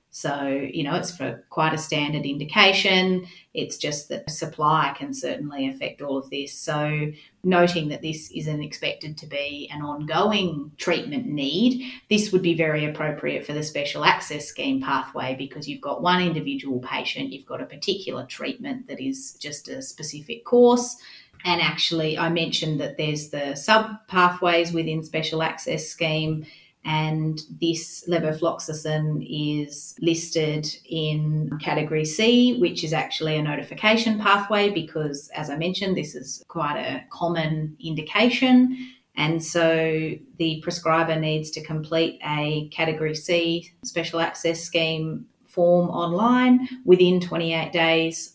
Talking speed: 140 wpm